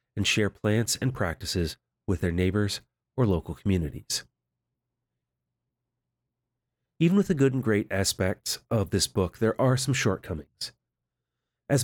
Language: English